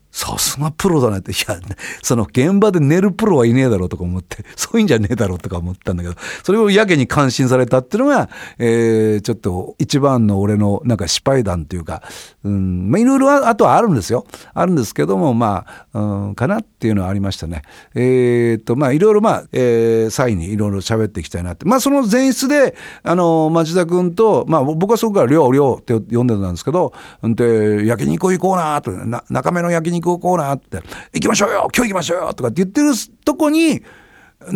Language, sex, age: Japanese, male, 50-69